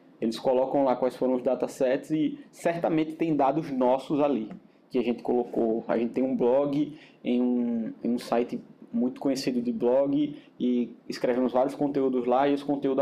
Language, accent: Portuguese, Brazilian